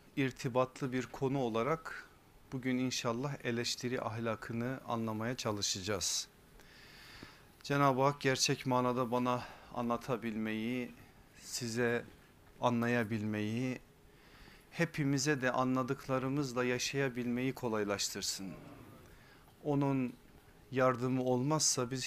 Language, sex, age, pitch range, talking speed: Turkish, male, 40-59, 120-145 Hz, 75 wpm